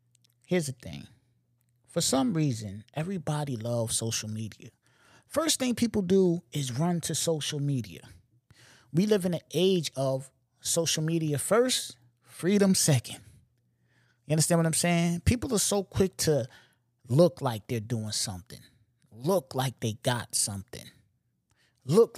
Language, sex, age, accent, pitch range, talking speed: English, male, 30-49, American, 120-165 Hz, 140 wpm